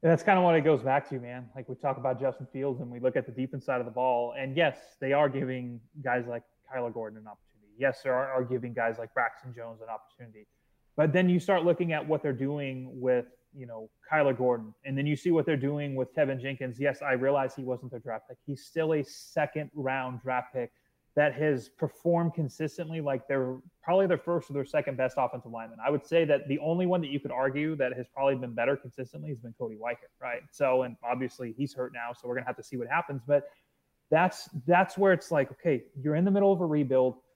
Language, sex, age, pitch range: English, male, 20-39, 130-165 Hz